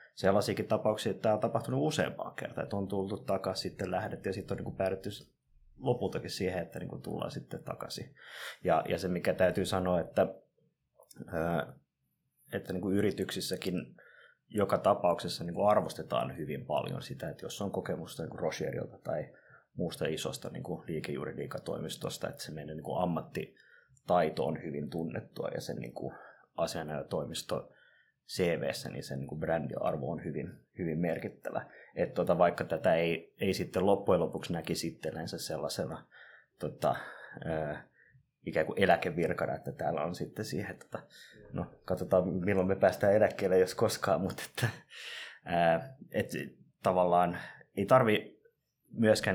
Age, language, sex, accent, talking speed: 20-39, Finnish, male, native, 145 wpm